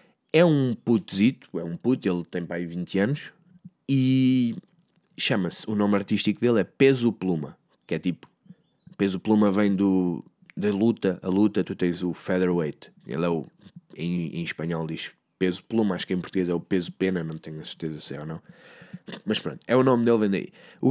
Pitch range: 95-155 Hz